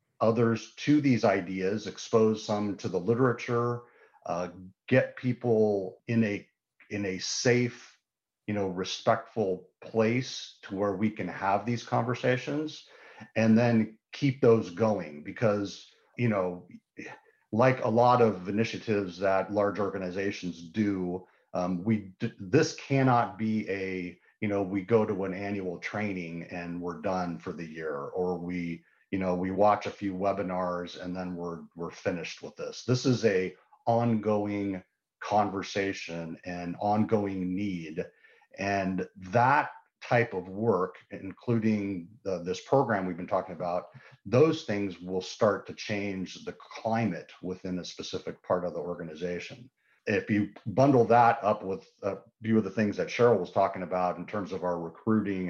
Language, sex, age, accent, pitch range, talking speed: English, male, 40-59, American, 90-115 Hz, 150 wpm